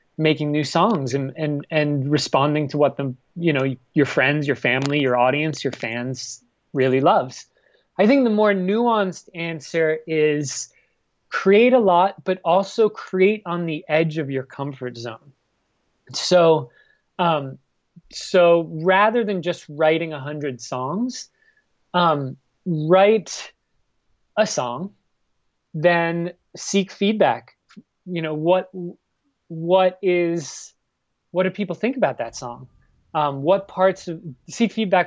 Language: English